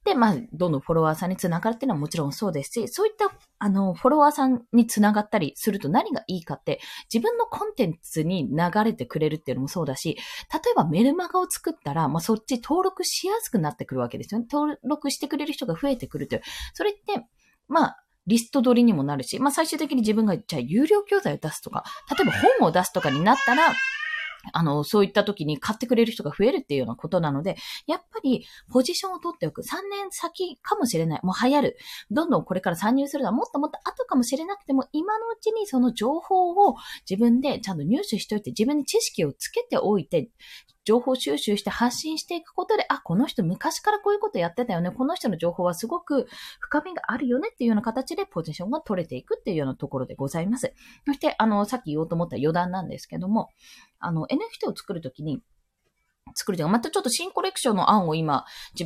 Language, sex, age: Japanese, female, 20-39